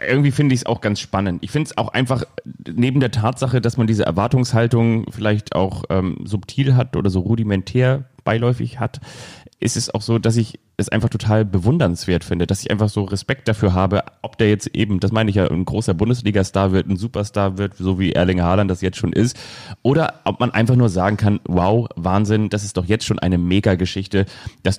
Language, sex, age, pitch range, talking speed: German, male, 30-49, 90-115 Hz, 210 wpm